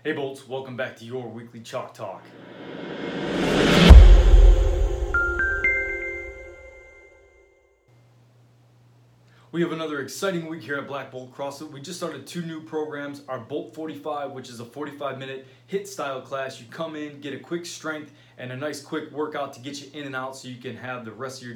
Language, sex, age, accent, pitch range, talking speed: English, male, 20-39, American, 125-150 Hz, 175 wpm